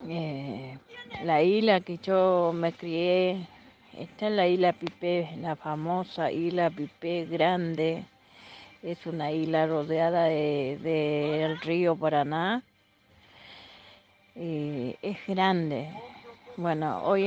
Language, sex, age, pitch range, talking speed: Spanish, female, 40-59, 155-185 Hz, 110 wpm